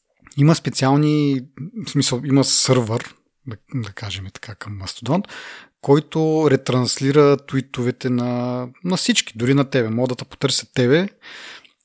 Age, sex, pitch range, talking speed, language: 30-49, male, 120-145 Hz, 120 wpm, Bulgarian